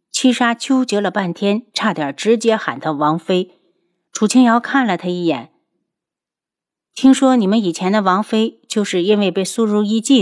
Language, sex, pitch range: Chinese, female, 175-235 Hz